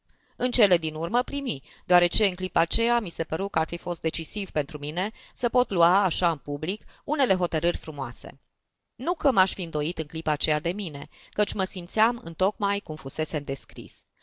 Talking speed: 195 wpm